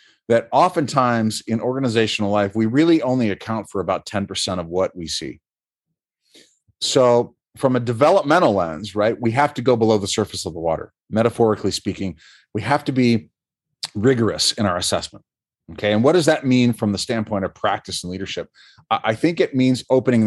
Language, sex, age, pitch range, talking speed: English, male, 40-59, 105-125 Hz, 180 wpm